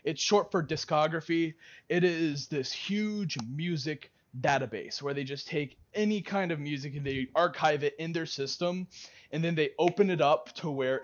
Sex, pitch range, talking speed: male, 140-175 Hz, 180 wpm